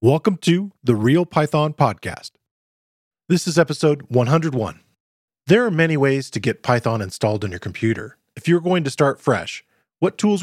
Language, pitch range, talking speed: English, 120-165 Hz, 165 wpm